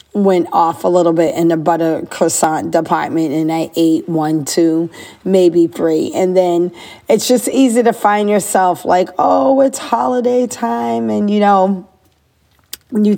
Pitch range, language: 165-195 Hz, English